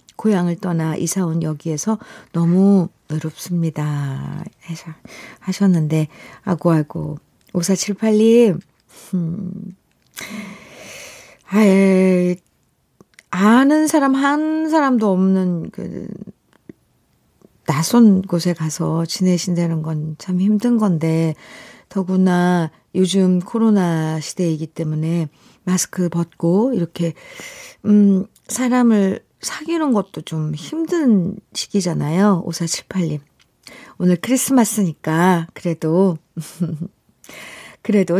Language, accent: Korean, native